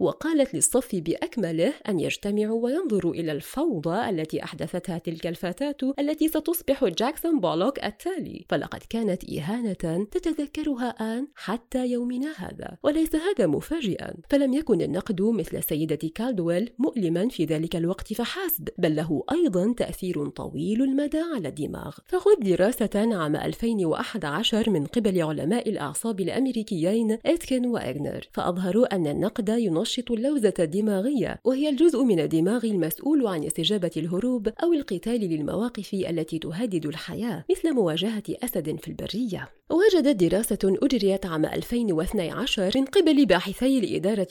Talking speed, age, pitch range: 125 wpm, 30-49, 175-265 Hz